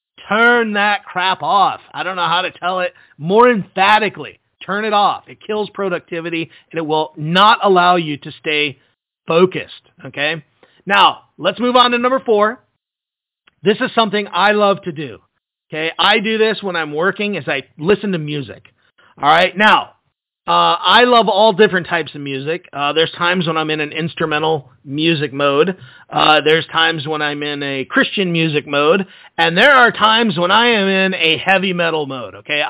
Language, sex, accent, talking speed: English, male, American, 180 wpm